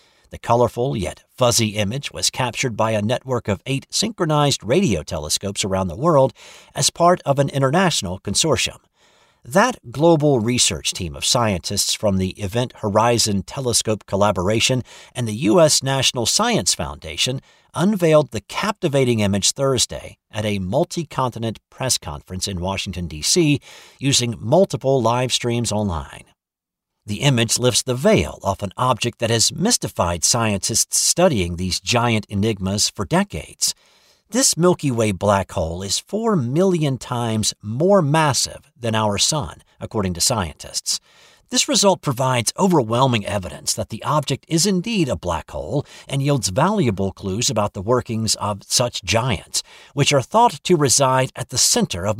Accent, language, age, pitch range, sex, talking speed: American, English, 50-69, 100-140 Hz, male, 145 wpm